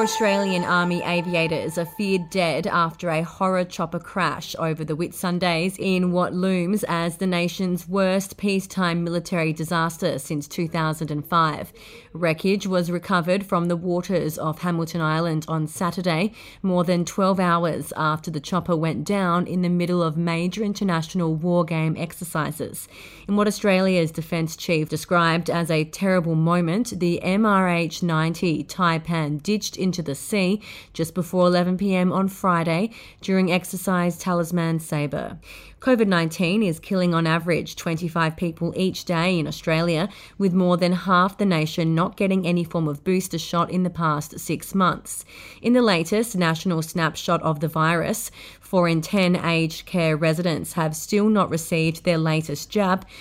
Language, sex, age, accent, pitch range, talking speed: English, female, 30-49, Australian, 165-185 Hz, 150 wpm